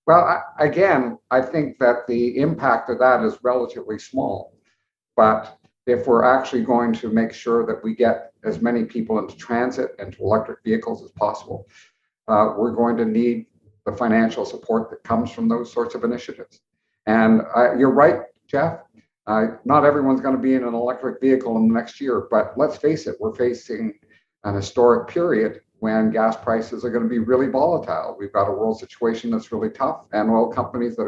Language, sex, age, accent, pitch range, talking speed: English, male, 50-69, American, 115-145 Hz, 190 wpm